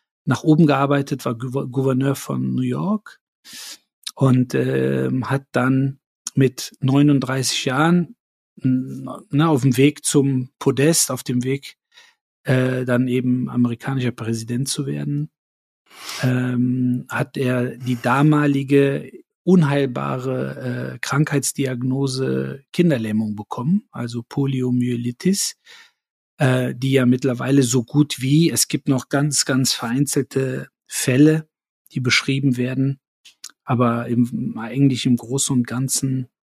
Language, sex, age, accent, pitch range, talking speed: German, male, 40-59, German, 125-140 Hz, 105 wpm